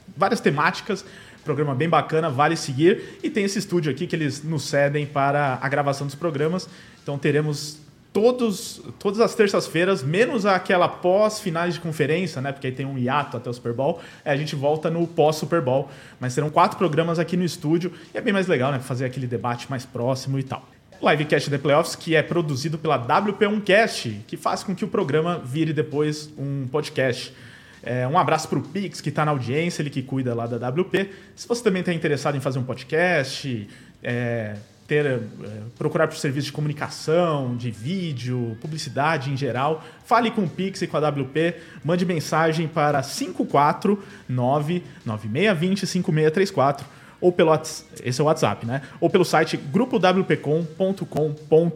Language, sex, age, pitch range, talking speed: English, male, 20-39, 135-175 Hz, 175 wpm